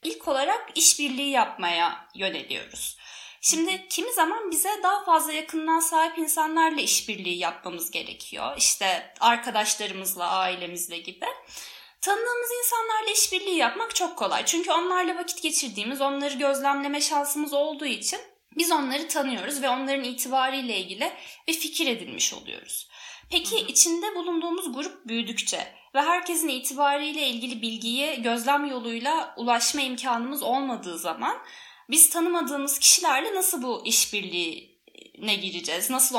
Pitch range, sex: 240-340 Hz, female